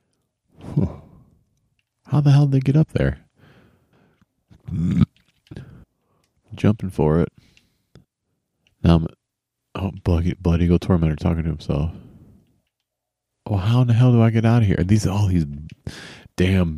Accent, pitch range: American, 75-100 Hz